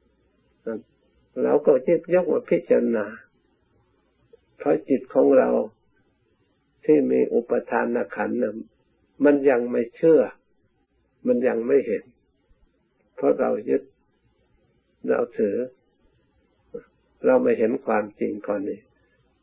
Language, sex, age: Thai, male, 60-79